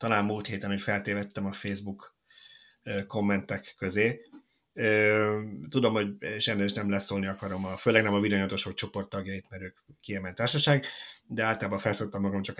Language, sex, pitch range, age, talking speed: Hungarian, male, 100-125 Hz, 30-49, 165 wpm